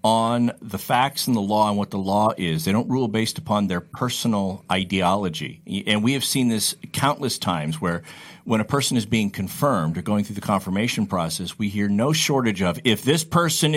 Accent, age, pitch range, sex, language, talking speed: American, 50-69, 110-150 Hz, male, English, 205 wpm